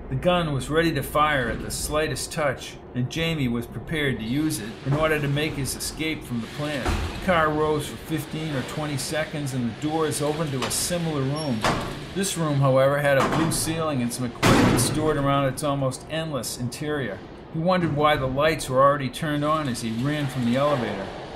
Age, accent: 50-69, American